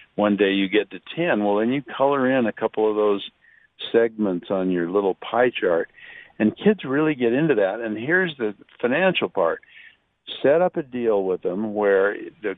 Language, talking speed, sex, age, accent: English, 190 wpm, male, 60-79, American